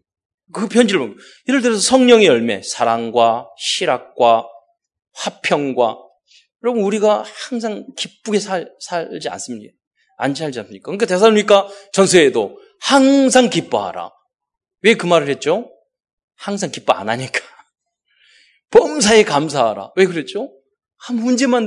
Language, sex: Korean, male